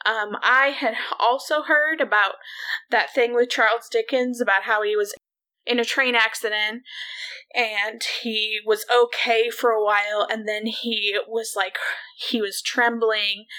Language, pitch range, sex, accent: English, 210-265 Hz, female, American